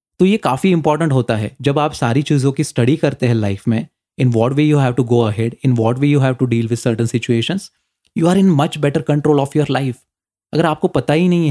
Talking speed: 250 wpm